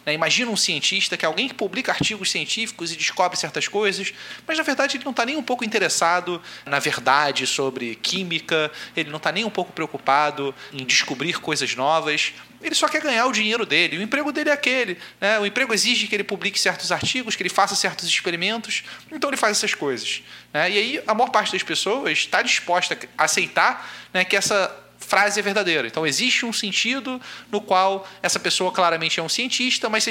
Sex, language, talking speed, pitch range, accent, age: male, Portuguese, 205 wpm, 155-220 Hz, Brazilian, 30-49